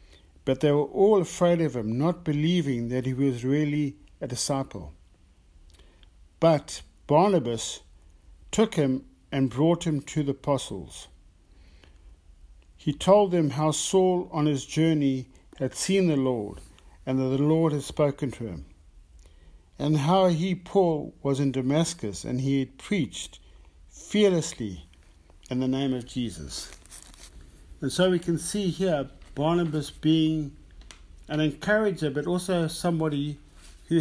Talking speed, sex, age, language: 135 wpm, male, 50-69, English